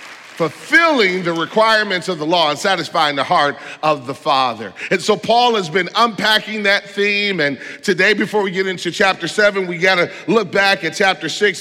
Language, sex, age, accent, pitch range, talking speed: English, male, 40-59, American, 155-215 Hz, 190 wpm